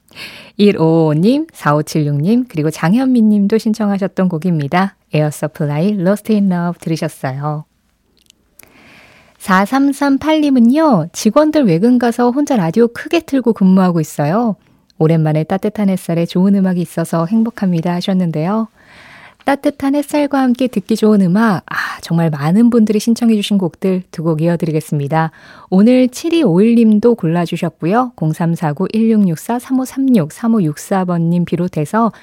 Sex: female